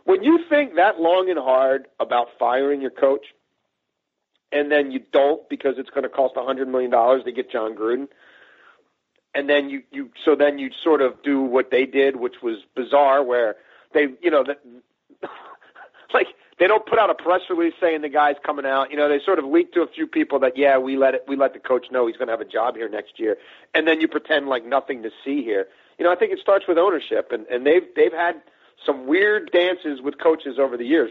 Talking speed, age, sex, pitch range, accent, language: 235 wpm, 40-59, male, 135-200 Hz, American, English